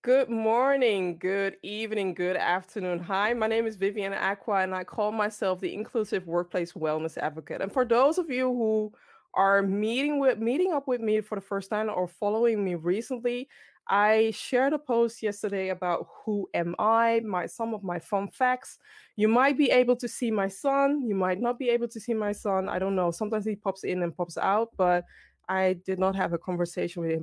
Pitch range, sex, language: 180-230 Hz, female, English